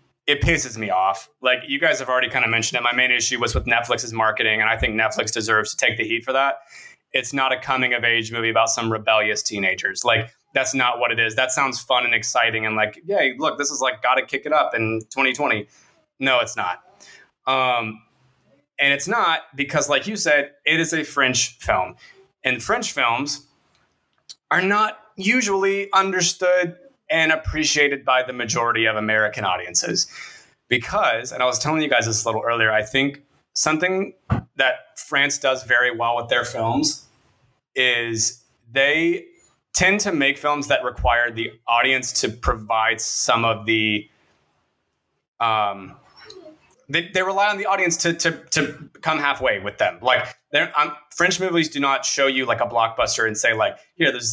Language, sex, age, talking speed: English, male, 20-39, 185 wpm